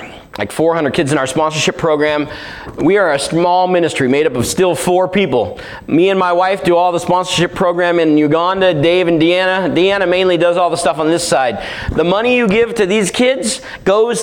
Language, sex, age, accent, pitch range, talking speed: English, male, 30-49, American, 140-185 Hz, 205 wpm